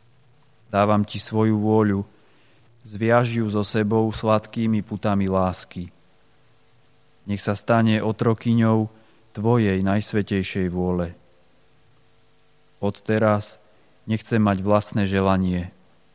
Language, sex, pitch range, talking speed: Slovak, male, 100-115 Hz, 90 wpm